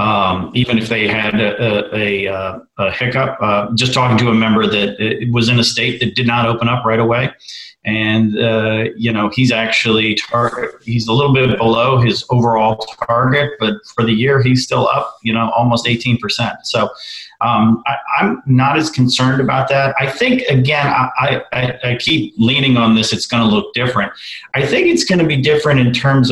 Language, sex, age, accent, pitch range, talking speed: English, male, 40-59, American, 115-135 Hz, 200 wpm